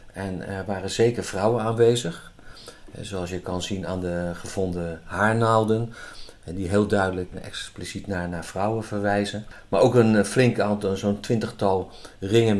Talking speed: 155 wpm